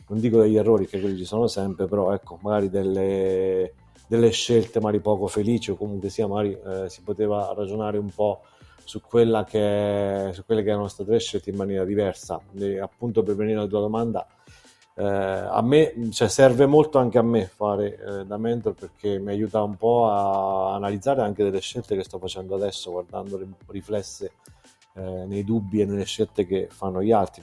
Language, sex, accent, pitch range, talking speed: Italian, male, native, 95-110 Hz, 195 wpm